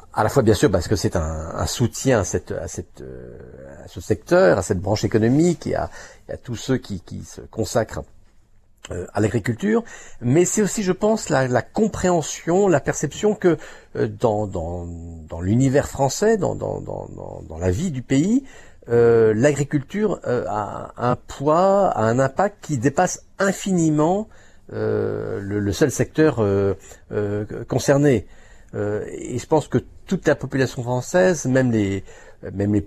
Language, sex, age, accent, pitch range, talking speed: French, male, 50-69, French, 100-150 Hz, 165 wpm